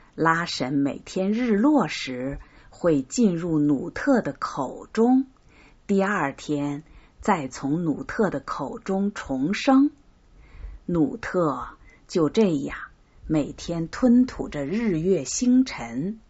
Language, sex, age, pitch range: Chinese, female, 50-69, 140-230 Hz